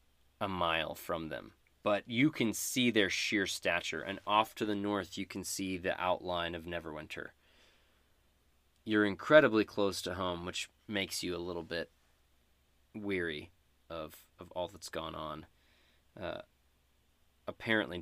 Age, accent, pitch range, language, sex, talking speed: 20-39, American, 70-100 Hz, English, male, 145 wpm